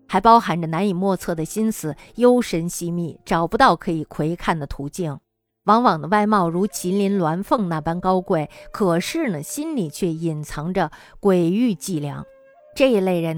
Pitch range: 165-230 Hz